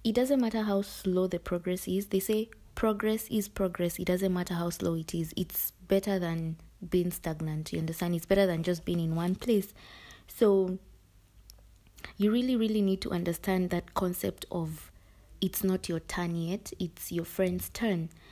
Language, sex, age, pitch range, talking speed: English, female, 20-39, 170-195 Hz, 175 wpm